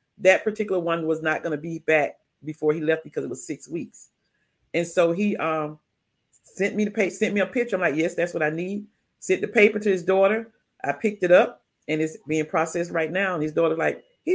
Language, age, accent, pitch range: English, 40-59, American, 155-200 Hz